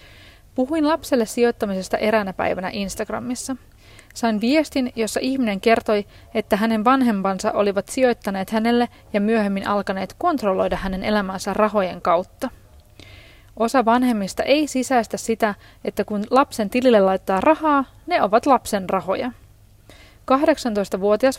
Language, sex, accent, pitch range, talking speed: Finnish, female, native, 190-245 Hz, 115 wpm